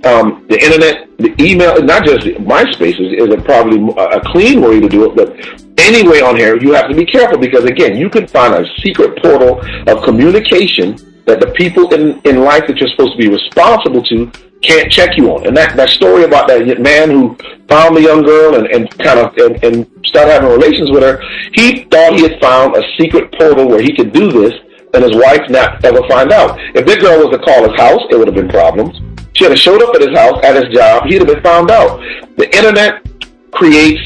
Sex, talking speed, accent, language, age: male, 225 wpm, American, English, 40-59